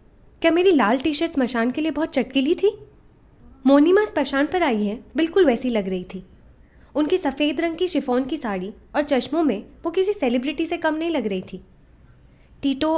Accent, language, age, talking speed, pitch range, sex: native, Hindi, 20-39, 190 wpm, 225-310 Hz, female